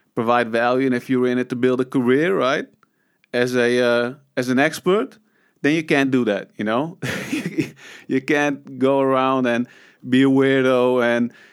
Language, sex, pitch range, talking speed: English, male, 130-170 Hz, 175 wpm